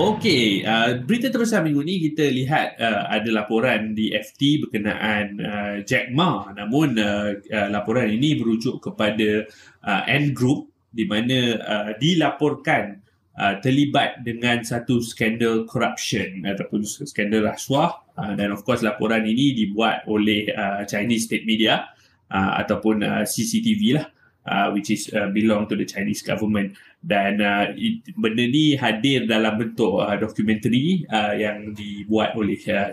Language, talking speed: Malay, 150 wpm